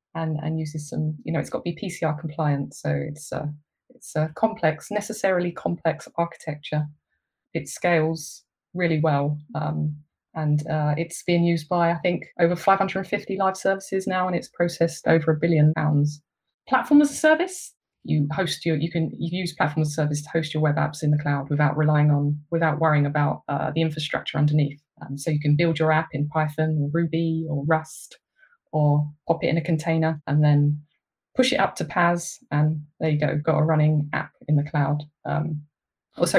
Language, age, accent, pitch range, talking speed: English, 20-39, British, 150-180 Hz, 195 wpm